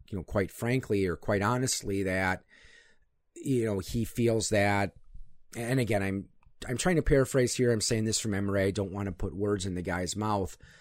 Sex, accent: male, American